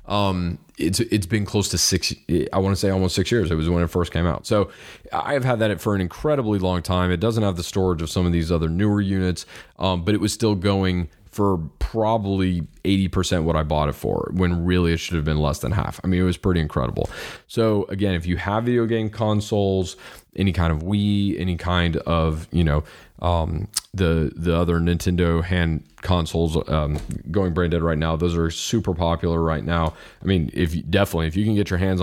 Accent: American